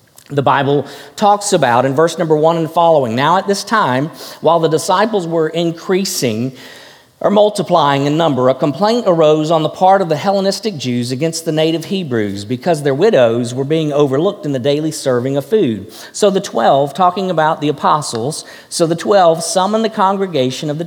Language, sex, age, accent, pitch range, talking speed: English, male, 50-69, American, 140-200 Hz, 185 wpm